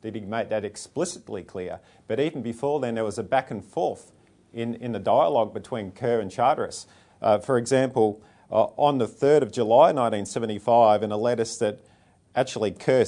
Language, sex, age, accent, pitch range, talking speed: English, male, 40-59, Australian, 110-135 Hz, 185 wpm